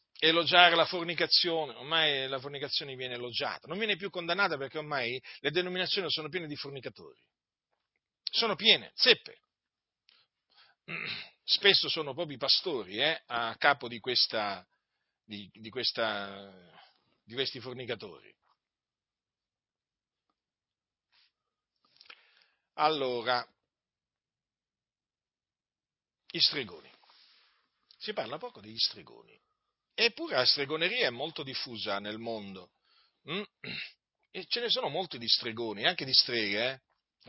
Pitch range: 120-160 Hz